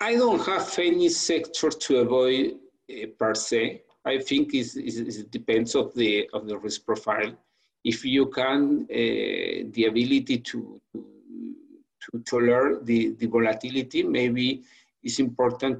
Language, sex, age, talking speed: English, male, 50-69, 140 wpm